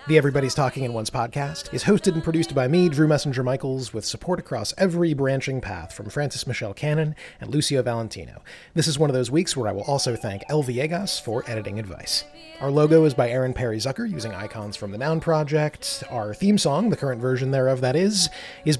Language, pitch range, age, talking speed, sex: English, 120-160 Hz, 30-49, 215 wpm, male